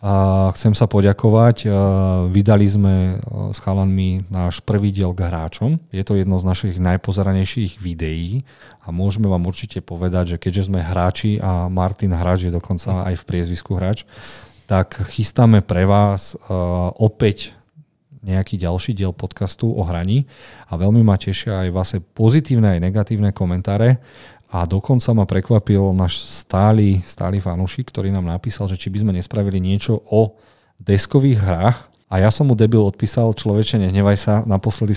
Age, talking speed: 40-59, 150 wpm